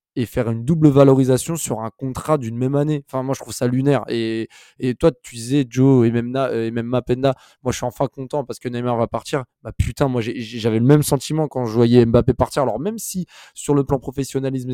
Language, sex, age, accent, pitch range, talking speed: French, male, 20-39, French, 120-140 Hz, 235 wpm